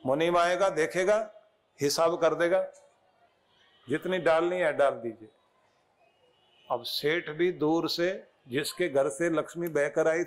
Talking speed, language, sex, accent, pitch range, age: 130 wpm, Hindi, male, native, 160-195 Hz, 50-69